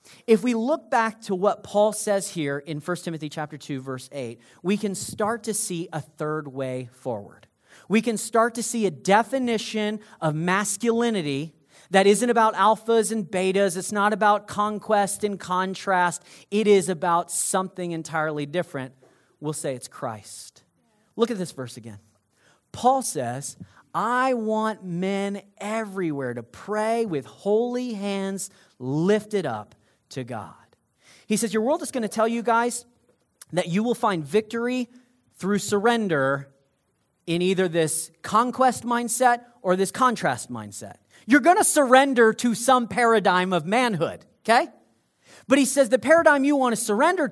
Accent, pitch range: American, 165-230 Hz